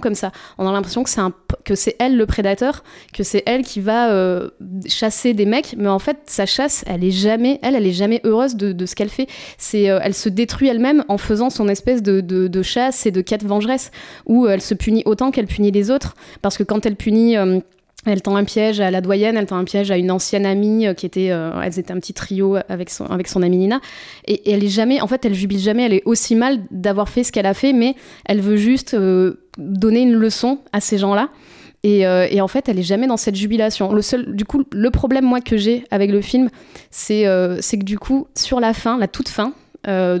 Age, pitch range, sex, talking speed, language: 20-39, 195-230 Hz, female, 250 wpm, French